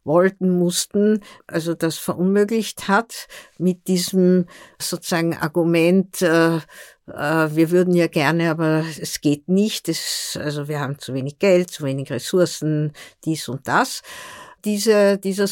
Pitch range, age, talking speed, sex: 155-180 Hz, 60-79, 135 wpm, female